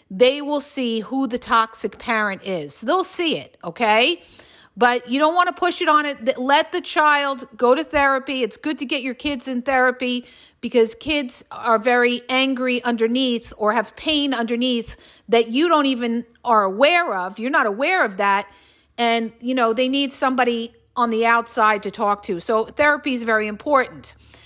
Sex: female